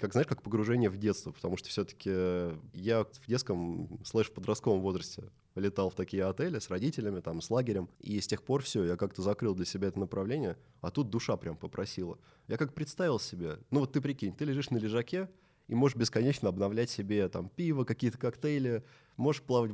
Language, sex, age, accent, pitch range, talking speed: Russian, male, 20-39, native, 100-125 Hz, 195 wpm